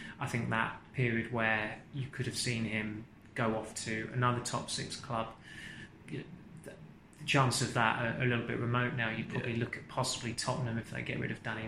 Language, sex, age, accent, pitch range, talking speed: English, male, 20-39, British, 115-130 Hz, 200 wpm